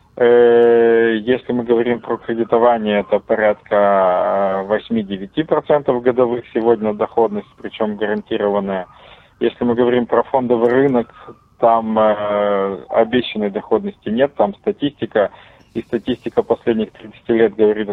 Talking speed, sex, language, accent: 105 wpm, male, Russian, native